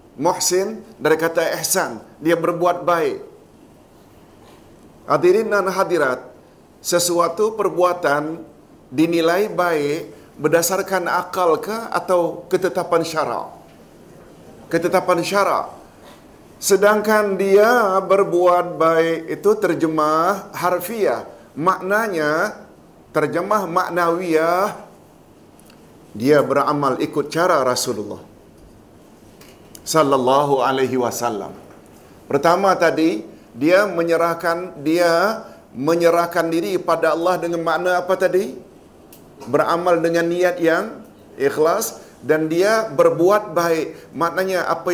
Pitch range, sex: 155-185 Hz, male